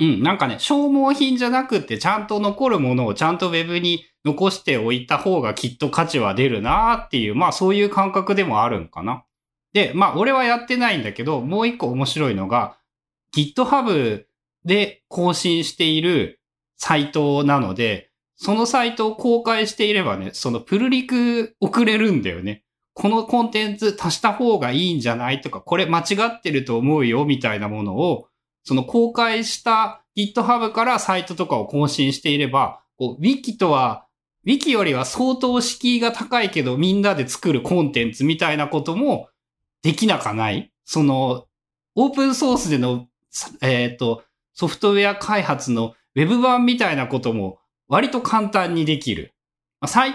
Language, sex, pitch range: Japanese, male, 135-225 Hz